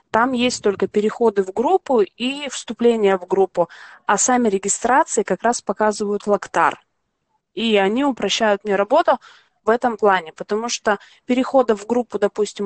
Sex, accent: female, native